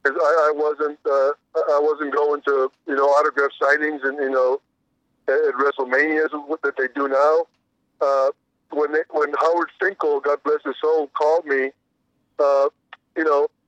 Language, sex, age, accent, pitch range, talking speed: English, male, 50-69, American, 145-185 Hz, 170 wpm